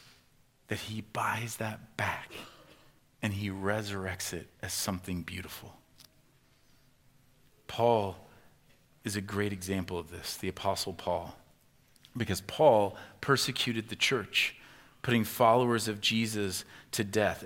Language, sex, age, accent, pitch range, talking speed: English, male, 40-59, American, 110-160 Hz, 115 wpm